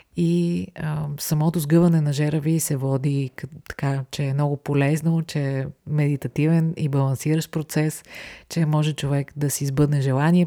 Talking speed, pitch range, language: 150 wpm, 140-160 Hz, Bulgarian